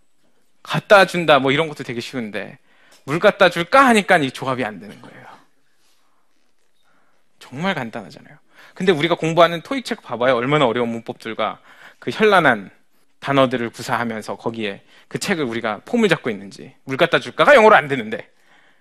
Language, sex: Korean, male